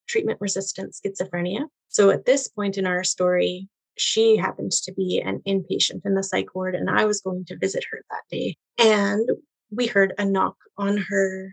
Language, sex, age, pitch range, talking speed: English, female, 30-49, 175-200 Hz, 185 wpm